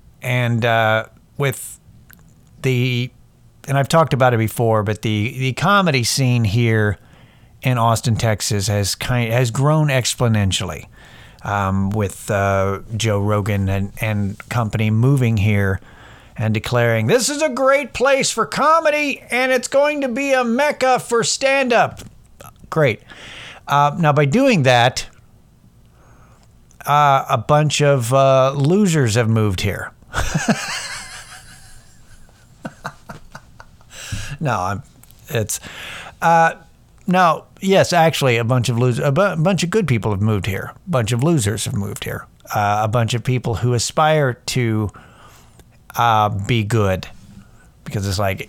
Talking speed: 135 wpm